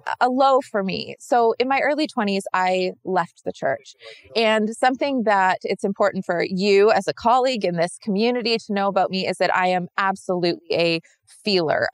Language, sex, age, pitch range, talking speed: English, female, 20-39, 180-225 Hz, 185 wpm